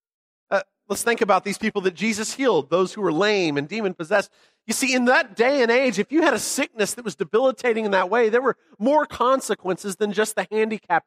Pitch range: 190-245 Hz